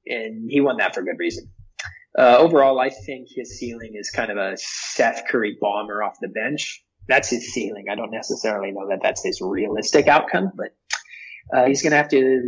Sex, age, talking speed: male, 20-39, 200 wpm